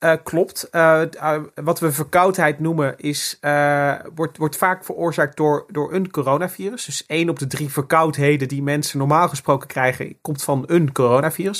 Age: 30-49